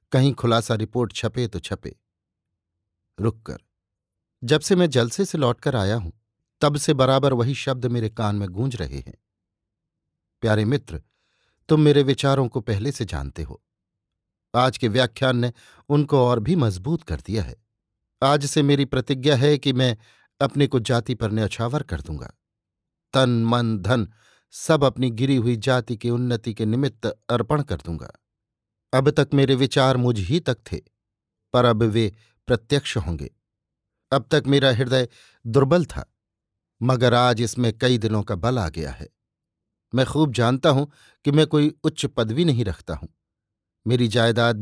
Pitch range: 105-135 Hz